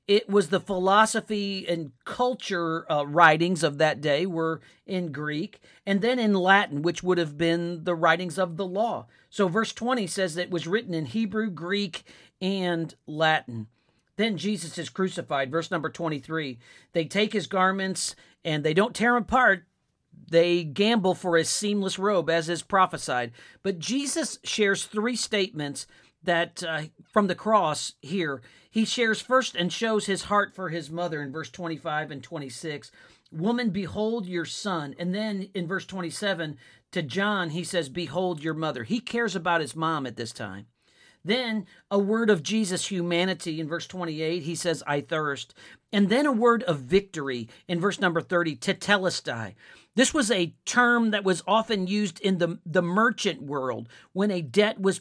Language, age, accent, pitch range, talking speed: English, 50-69, American, 165-210 Hz, 170 wpm